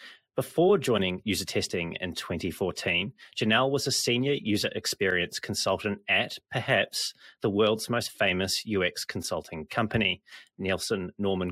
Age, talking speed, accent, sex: 30-49, 125 wpm, Australian, male